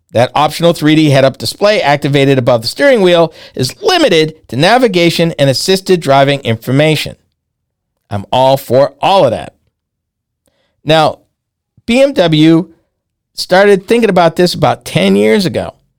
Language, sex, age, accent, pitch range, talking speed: English, male, 50-69, American, 140-200 Hz, 130 wpm